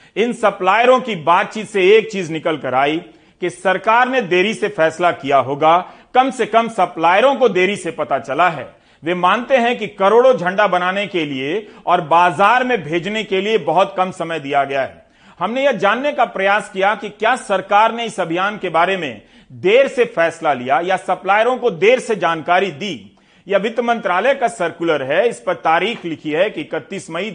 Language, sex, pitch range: Hindi, male, 170-220 Hz